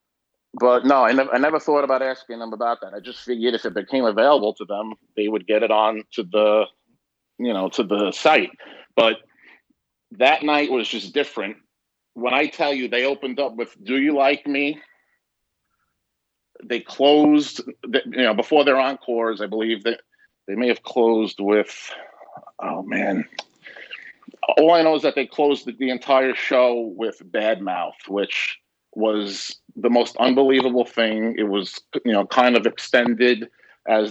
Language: English